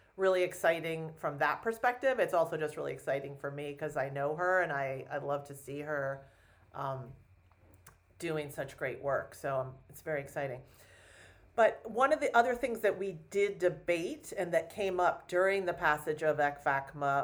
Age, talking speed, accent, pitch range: 40-59, 180 wpm, American, 140-180 Hz